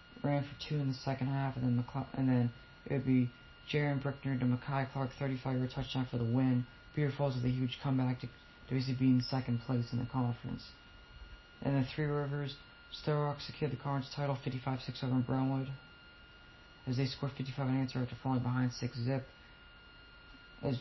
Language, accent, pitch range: English, American, 120-135 Hz